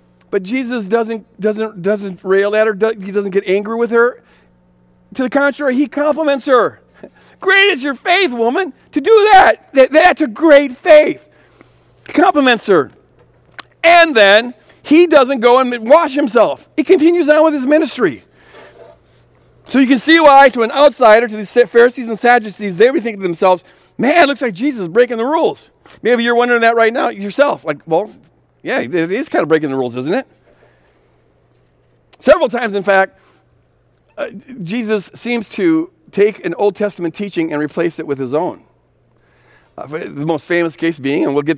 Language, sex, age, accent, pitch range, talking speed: English, male, 50-69, American, 185-275 Hz, 175 wpm